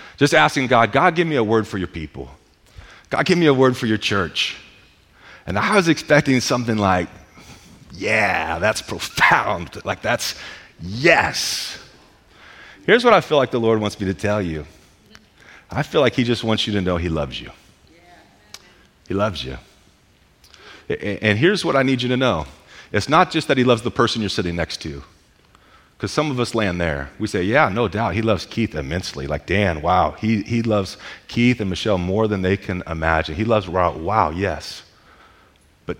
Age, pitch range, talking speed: 40-59, 85-115 Hz, 190 wpm